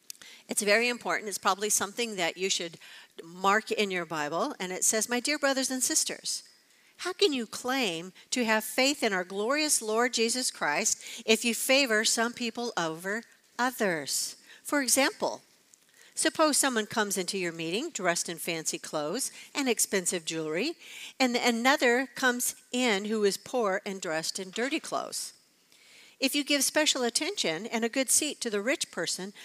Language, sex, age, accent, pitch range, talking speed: English, female, 50-69, American, 180-245 Hz, 165 wpm